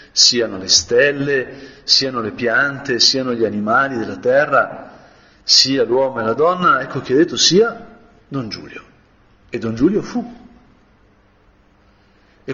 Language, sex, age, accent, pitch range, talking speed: Italian, male, 50-69, native, 100-140 Hz, 135 wpm